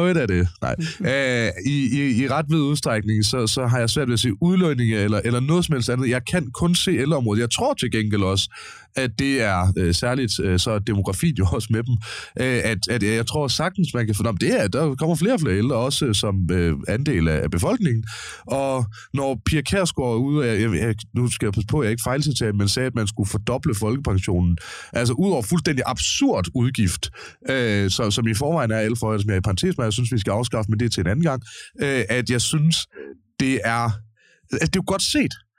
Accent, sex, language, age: native, male, Danish, 30-49